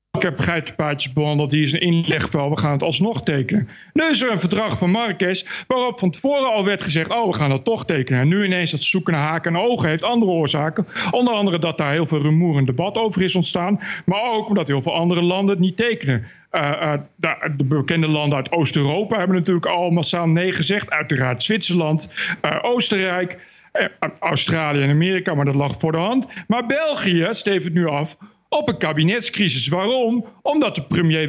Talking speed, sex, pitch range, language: 205 wpm, male, 160-215 Hz, Dutch